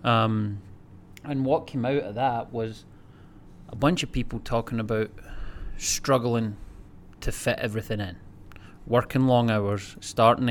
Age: 20-39